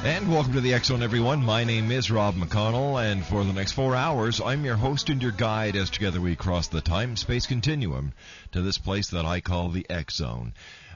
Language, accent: English, American